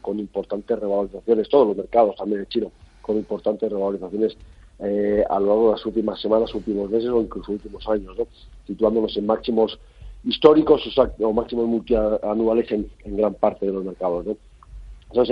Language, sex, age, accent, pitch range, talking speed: Spanish, male, 50-69, Spanish, 100-120 Hz, 170 wpm